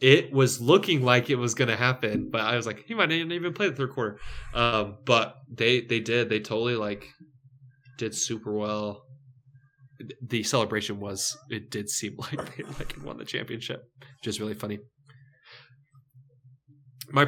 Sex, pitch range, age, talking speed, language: male, 110-135 Hz, 20-39, 165 wpm, English